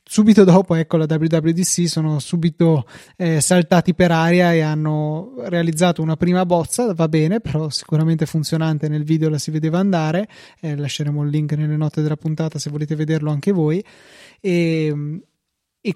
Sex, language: male, Italian